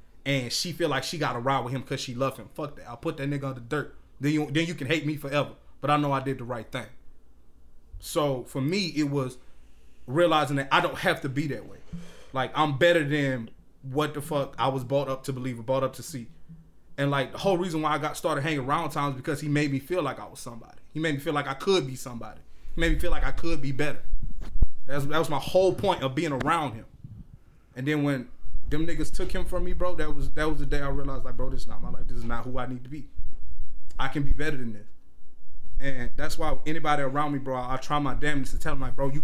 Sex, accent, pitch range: male, American, 125-155 Hz